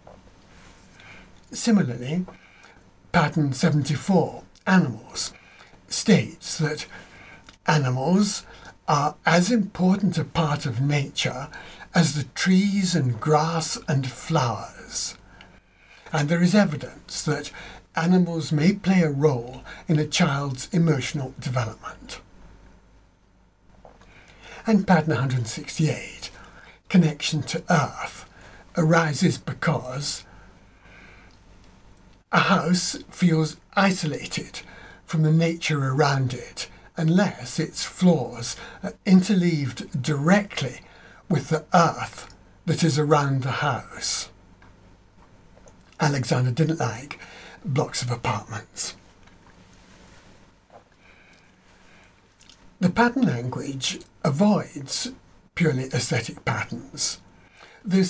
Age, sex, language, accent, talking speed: 60-79, male, English, British, 85 wpm